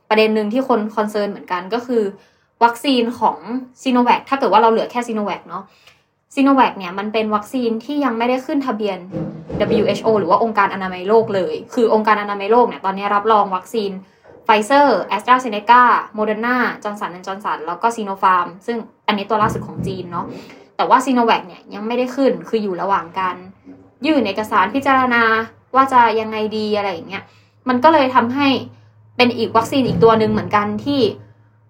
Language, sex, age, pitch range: Thai, female, 20-39, 205-245 Hz